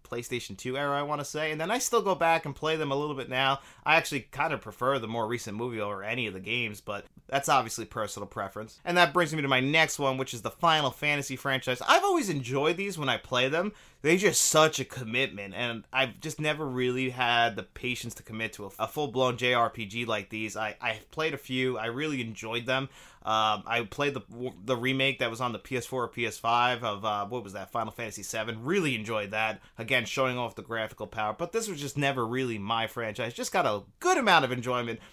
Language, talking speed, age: English, 230 wpm, 30-49